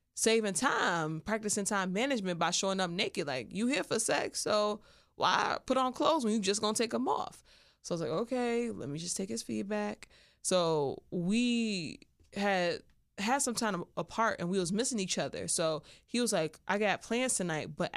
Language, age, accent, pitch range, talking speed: English, 20-39, American, 170-210 Hz, 195 wpm